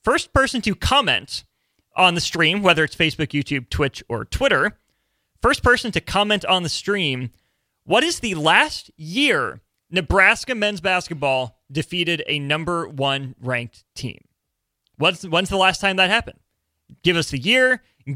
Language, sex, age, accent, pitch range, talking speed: English, male, 30-49, American, 135-180 Hz, 155 wpm